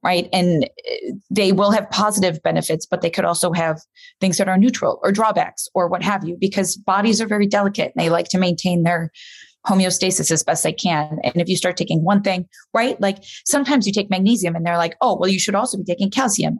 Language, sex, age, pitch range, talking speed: English, female, 20-39, 170-210 Hz, 225 wpm